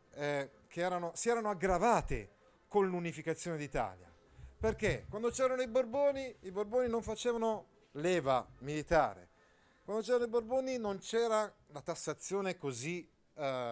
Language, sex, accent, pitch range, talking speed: Italian, male, native, 115-170 Hz, 130 wpm